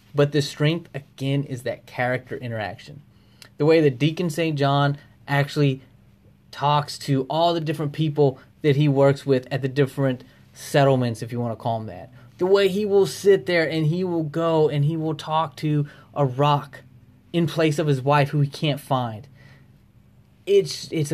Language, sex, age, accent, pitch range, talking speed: English, male, 20-39, American, 125-160 Hz, 180 wpm